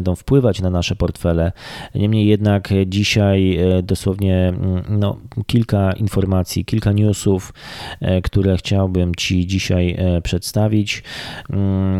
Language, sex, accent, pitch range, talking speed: Polish, male, native, 95-105 Hz, 90 wpm